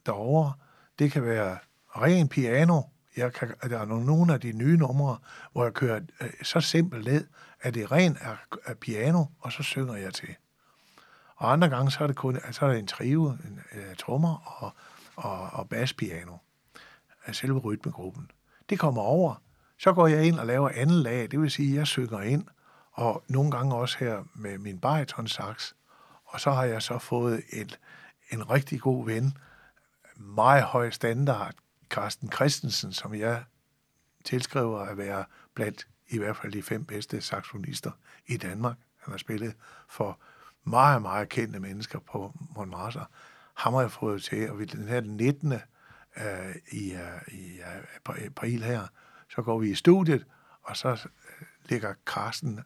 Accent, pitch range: native, 110-145 Hz